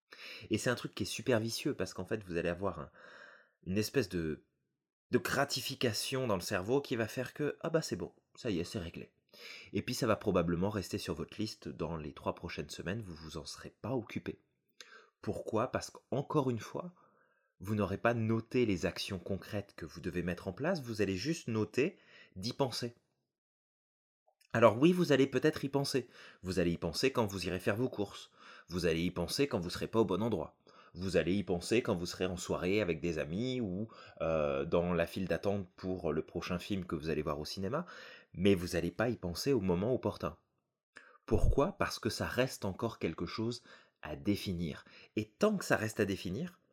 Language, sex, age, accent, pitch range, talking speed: French, male, 30-49, French, 90-125 Hz, 210 wpm